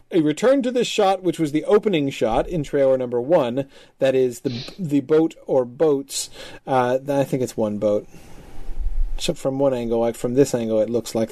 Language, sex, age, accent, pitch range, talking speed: English, male, 40-59, American, 135-175 Hz, 200 wpm